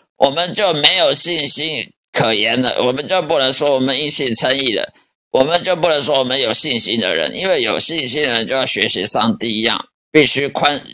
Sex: male